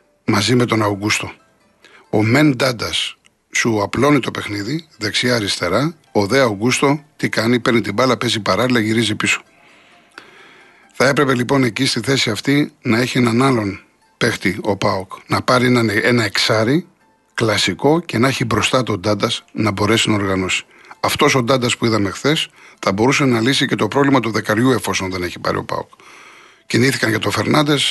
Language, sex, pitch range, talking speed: Greek, male, 110-135 Hz, 170 wpm